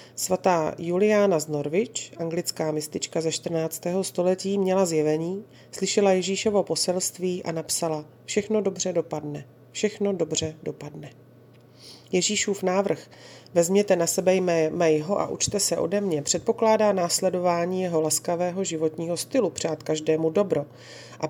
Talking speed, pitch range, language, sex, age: 125 wpm, 150-185 Hz, Slovak, female, 30-49